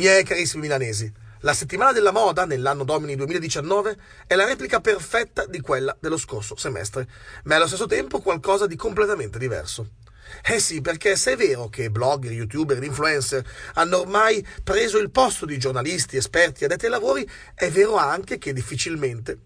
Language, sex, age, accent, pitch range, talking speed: English, male, 30-49, Italian, 125-175 Hz, 175 wpm